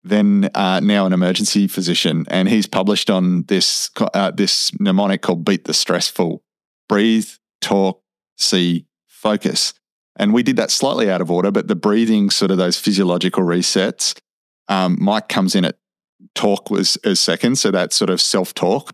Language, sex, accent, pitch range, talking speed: English, male, Australian, 90-95 Hz, 165 wpm